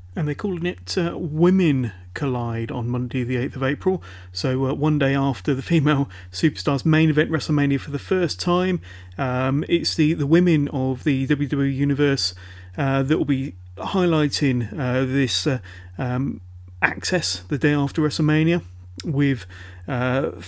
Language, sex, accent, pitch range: English, male, British, 125-155 Hz